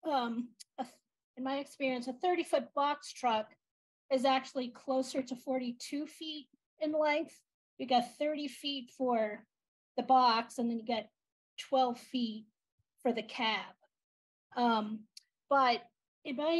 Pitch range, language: 230-275 Hz, English